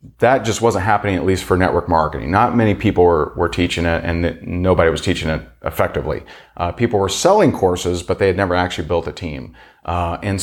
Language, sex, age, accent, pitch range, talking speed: English, male, 30-49, American, 85-100 Hz, 215 wpm